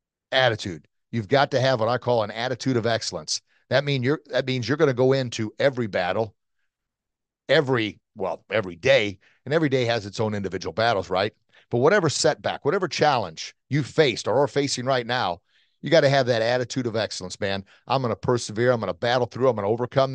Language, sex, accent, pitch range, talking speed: English, male, American, 110-140 Hz, 210 wpm